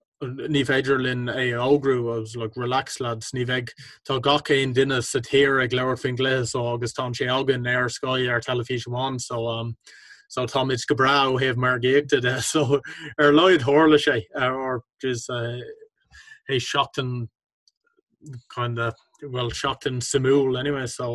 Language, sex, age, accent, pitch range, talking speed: English, male, 20-39, Irish, 120-135 Hz, 145 wpm